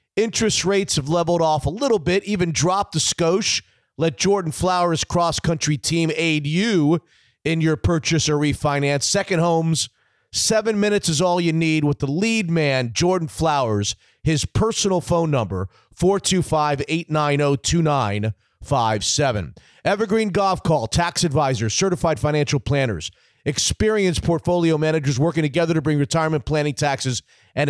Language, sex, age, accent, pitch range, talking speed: English, male, 40-59, American, 140-180 Hz, 135 wpm